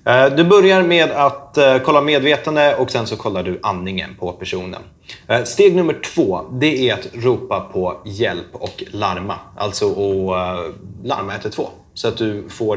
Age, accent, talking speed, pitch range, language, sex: 30-49, native, 155 wpm, 100-135 Hz, Swedish, male